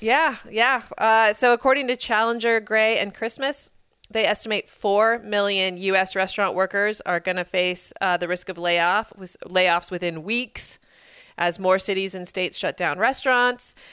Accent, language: American, English